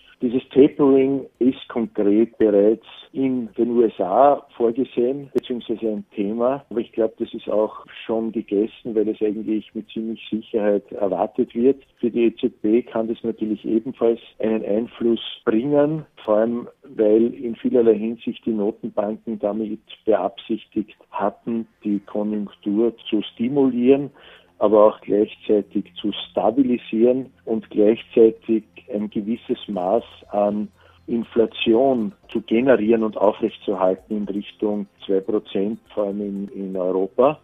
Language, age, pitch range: German, 50-69, 105-125 Hz